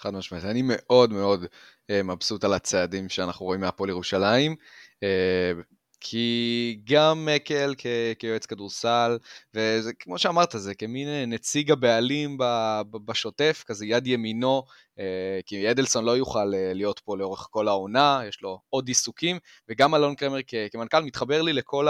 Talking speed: 130 wpm